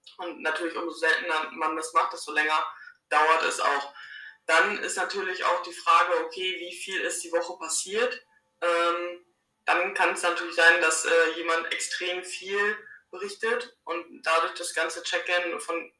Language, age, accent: German, 20-39, German